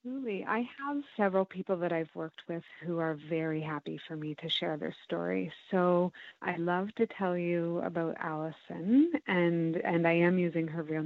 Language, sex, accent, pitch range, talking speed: English, female, American, 160-185 Hz, 180 wpm